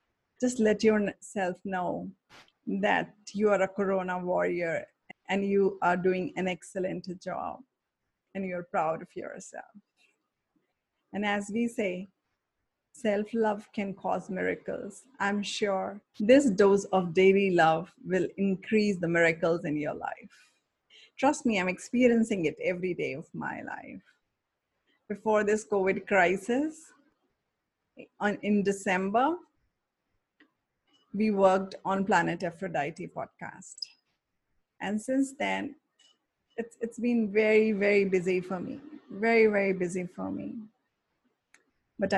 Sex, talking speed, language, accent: female, 120 wpm, English, Indian